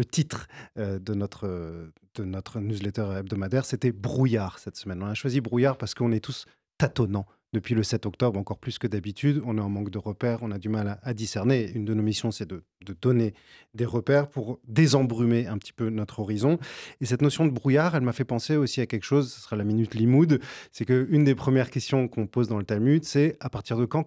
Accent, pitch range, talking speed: French, 110-130 Hz, 240 wpm